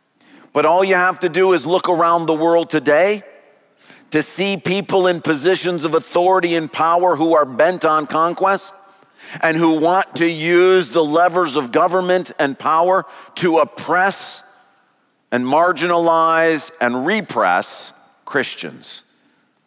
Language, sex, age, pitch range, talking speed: English, male, 40-59, 120-170 Hz, 135 wpm